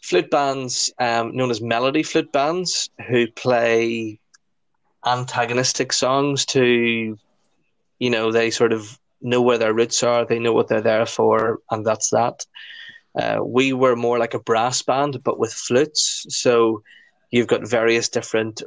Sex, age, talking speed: male, 20-39, 155 wpm